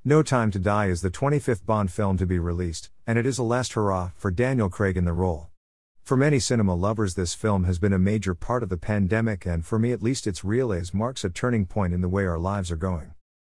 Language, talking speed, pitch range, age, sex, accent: English, 250 wpm, 90-115 Hz, 50-69, male, American